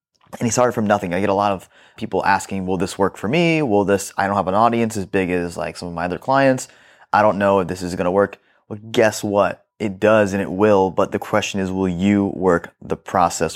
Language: English